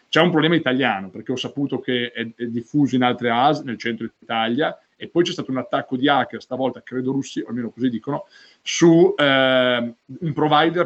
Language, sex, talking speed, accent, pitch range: Italian, male, 190 wpm, native, 120-140 Hz